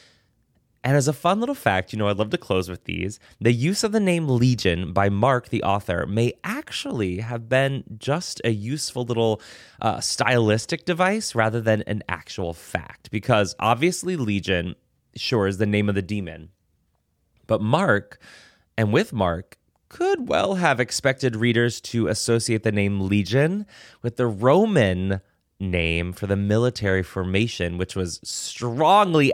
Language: English